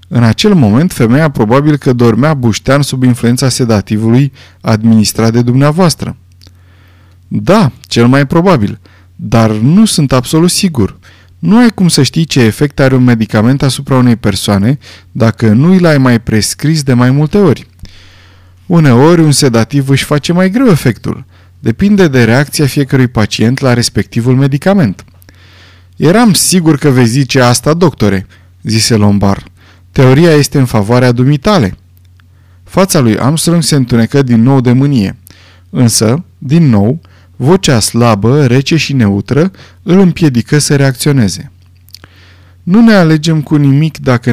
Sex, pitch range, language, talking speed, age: male, 105-150 Hz, Romanian, 140 wpm, 20-39